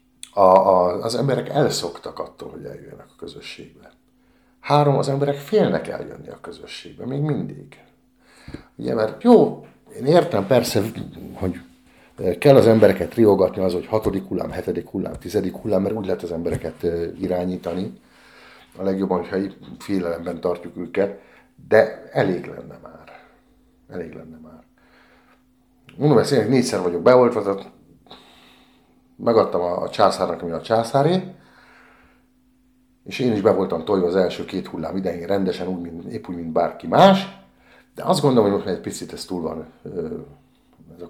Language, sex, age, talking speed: Hungarian, male, 50-69, 145 wpm